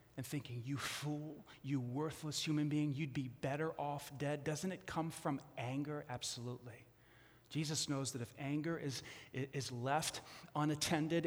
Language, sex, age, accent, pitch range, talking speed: English, male, 30-49, American, 145-230 Hz, 150 wpm